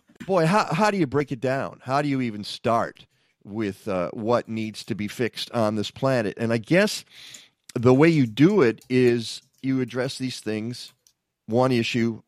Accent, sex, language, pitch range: American, male, English, 115-140 Hz